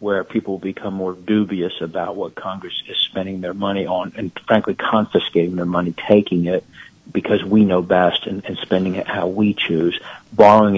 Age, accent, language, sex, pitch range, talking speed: 60-79, American, English, male, 95-110 Hz, 180 wpm